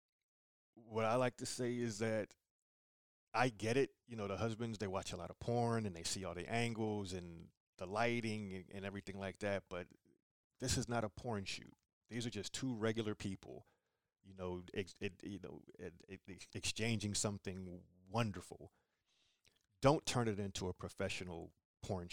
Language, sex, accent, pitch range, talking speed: English, male, American, 95-115 Hz, 175 wpm